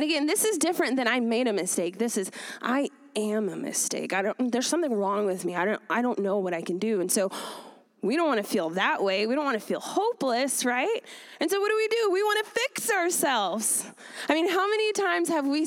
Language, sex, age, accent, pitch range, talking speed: English, female, 20-39, American, 205-310 Hz, 250 wpm